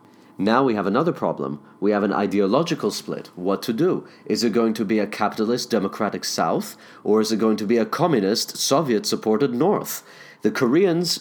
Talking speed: 180 wpm